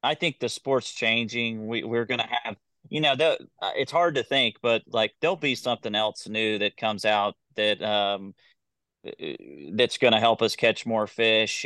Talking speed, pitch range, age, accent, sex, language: 190 wpm, 110-120 Hz, 30-49, American, male, English